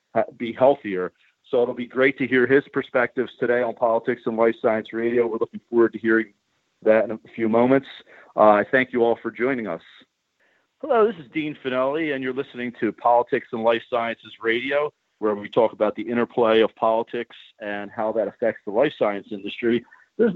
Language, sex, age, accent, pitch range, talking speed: English, male, 40-59, American, 115-130 Hz, 190 wpm